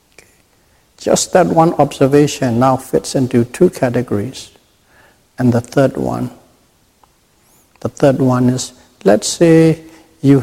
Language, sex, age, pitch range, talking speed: English, male, 60-79, 120-135 Hz, 115 wpm